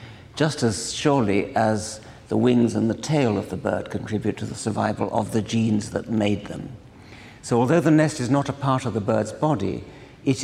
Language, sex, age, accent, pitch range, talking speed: English, male, 60-79, British, 110-130 Hz, 200 wpm